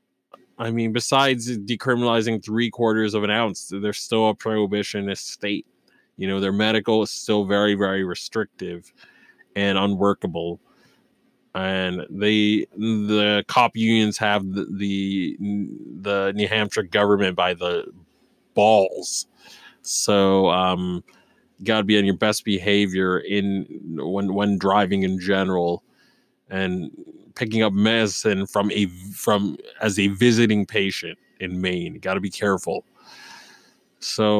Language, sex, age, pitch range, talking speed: English, male, 20-39, 100-110 Hz, 125 wpm